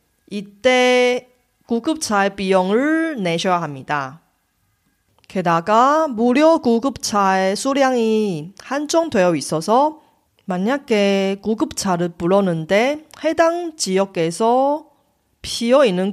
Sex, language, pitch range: female, Korean, 175-255 Hz